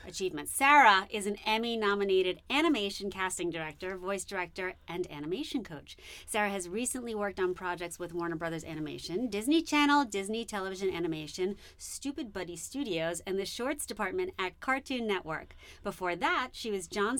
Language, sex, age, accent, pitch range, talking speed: English, female, 30-49, American, 180-235 Hz, 155 wpm